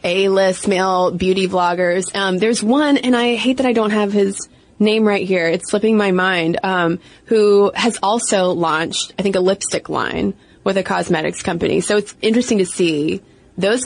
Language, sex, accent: English, female, American